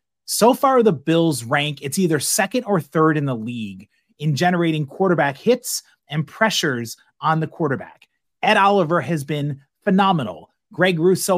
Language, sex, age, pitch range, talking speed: English, male, 30-49, 135-185 Hz, 155 wpm